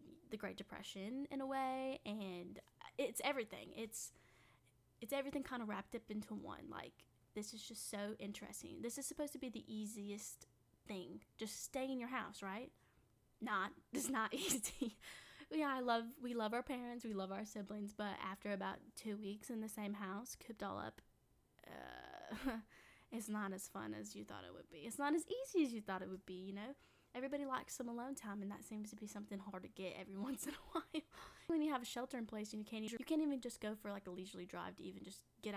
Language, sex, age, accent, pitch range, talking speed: English, female, 10-29, American, 200-255 Hz, 220 wpm